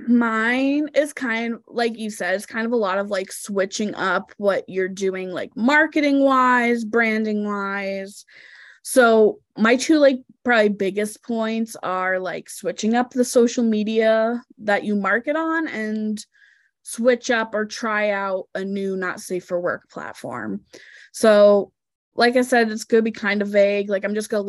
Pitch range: 190-230 Hz